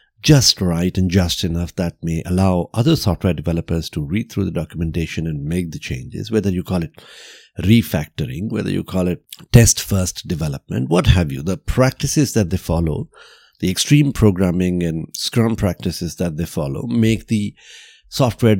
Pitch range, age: 85-110 Hz, 50-69